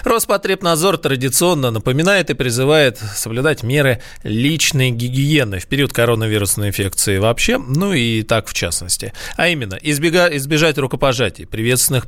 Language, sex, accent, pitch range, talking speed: Russian, male, native, 110-145 Hz, 120 wpm